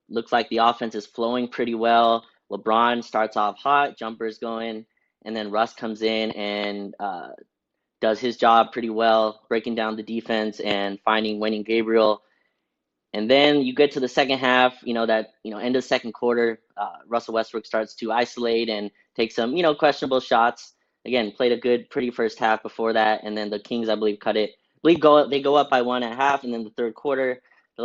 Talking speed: 215 wpm